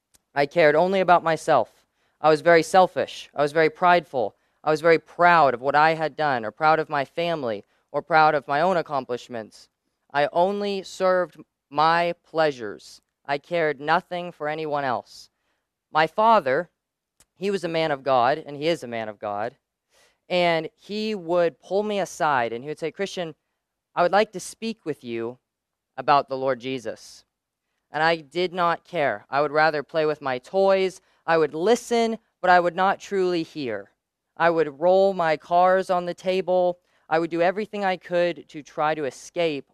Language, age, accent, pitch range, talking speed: English, 30-49, American, 145-175 Hz, 180 wpm